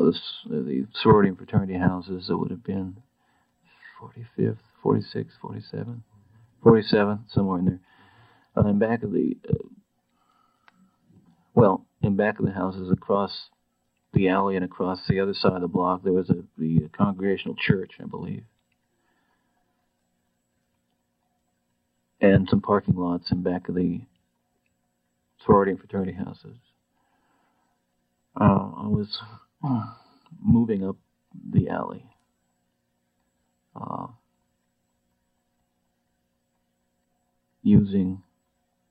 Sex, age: male, 50-69